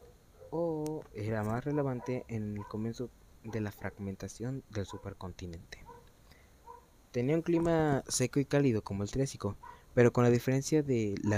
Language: Spanish